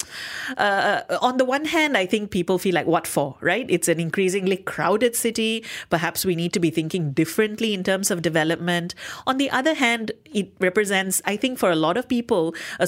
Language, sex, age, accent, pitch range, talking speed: English, female, 30-49, Indian, 160-215 Hz, 200 wpm